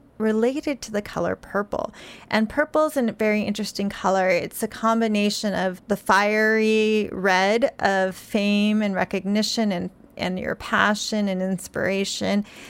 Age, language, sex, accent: 30-49, English, female, American